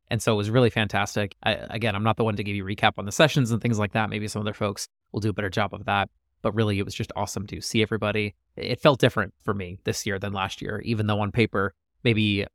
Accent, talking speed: American, 275 wpm